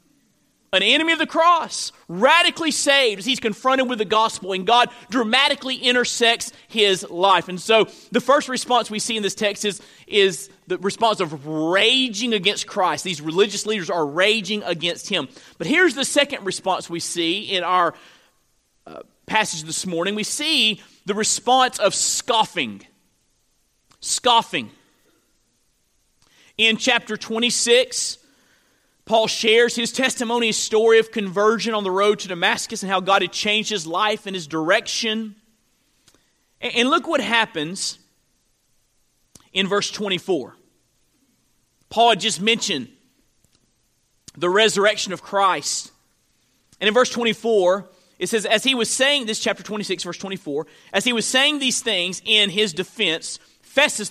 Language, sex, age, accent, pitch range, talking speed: English, male, 40-59, American, 185-235 Hz, 145 wpm